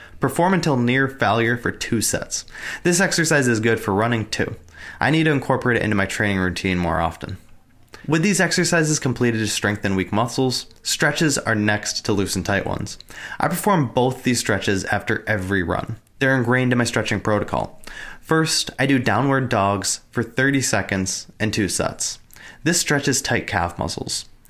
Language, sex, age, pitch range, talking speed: English, male, 20-39, 105-140 Hz, 175 wpm